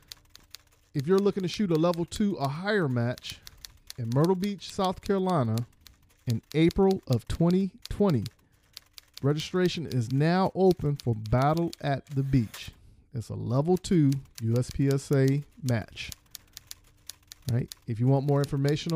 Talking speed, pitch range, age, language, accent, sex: 125 wpm, 115-165 Hz, 40-59, English, American, male